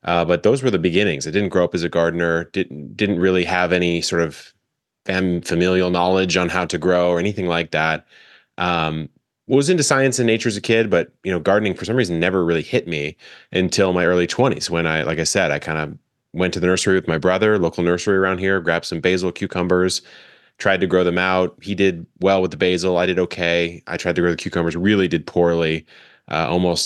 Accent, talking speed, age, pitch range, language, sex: American, 230 wpm, 20-39, 80-90 Hz, English, male